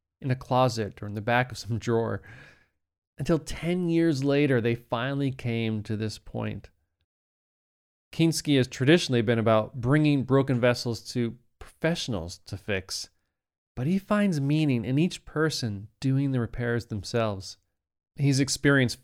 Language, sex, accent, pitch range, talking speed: English, male, American, 110-140 Hz, 140 wpm